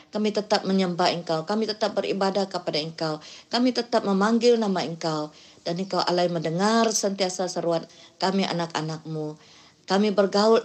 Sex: female